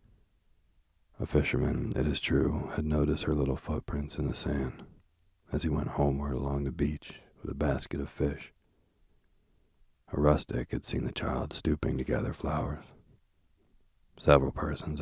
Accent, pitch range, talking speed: American, 70-80 Hz, 150 wpm